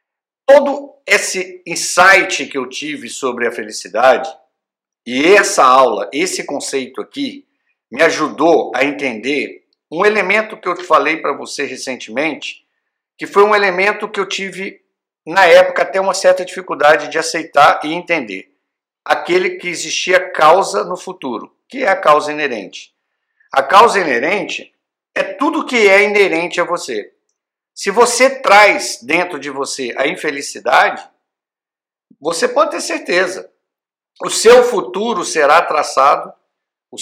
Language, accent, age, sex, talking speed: Portuguese, Brazilian, 50-69, male, 135 wpm